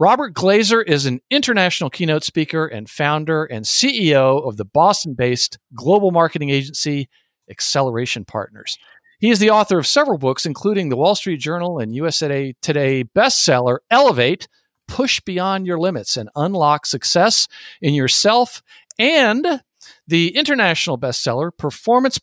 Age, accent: 50-69, American